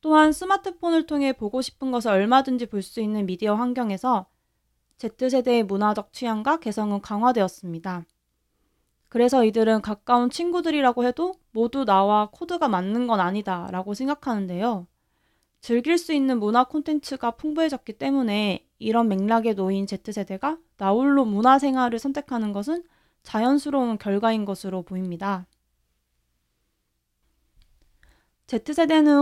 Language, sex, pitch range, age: Korean, female, 200-275 Hz, 20-39